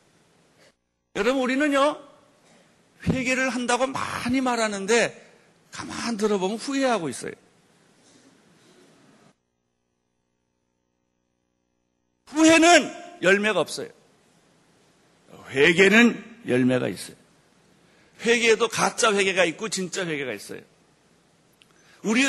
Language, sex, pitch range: Korean, male, 175-265 Hz